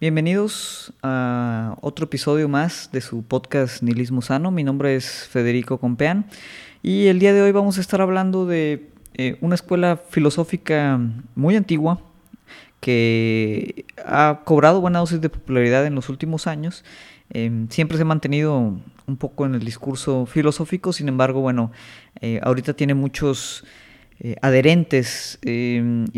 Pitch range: 130-165 Hz